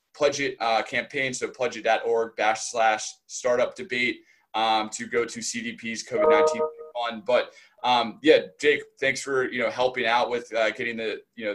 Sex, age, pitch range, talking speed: male, 20-39, 115-135 Hz, 170 wpm